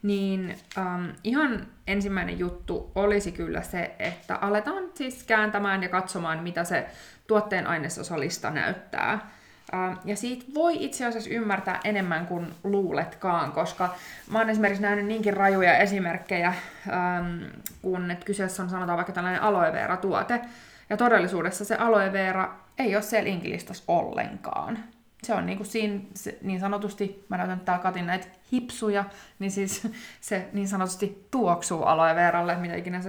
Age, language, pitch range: 20-39, Finnish, 175-205 Hz